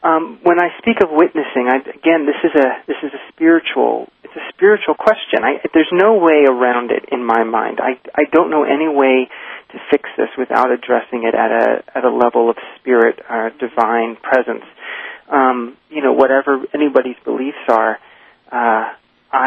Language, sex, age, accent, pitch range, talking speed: English, male, 40-59, American, 120-145 Hz, 180 wpm